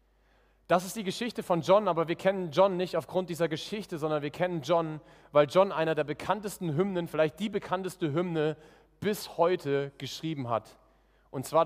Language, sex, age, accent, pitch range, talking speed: German, male, 30-49, German, 155-200 Hz, 175 wpm